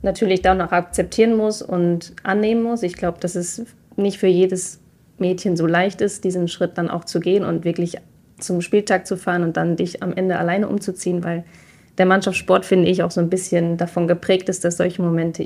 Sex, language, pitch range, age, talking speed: female, German, 170-185 Hz, 20-39, 205 wpm